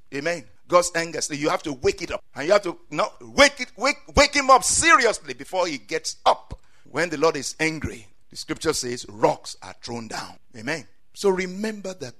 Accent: Nigerian